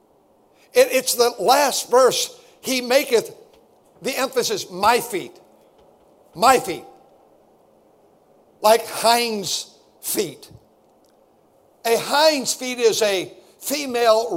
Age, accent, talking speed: 60-79, American, 90 wpm